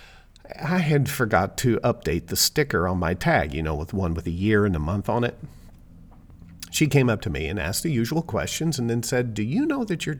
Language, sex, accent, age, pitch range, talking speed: English, male, American, 50-69, 85-125 Hz, 235 wpm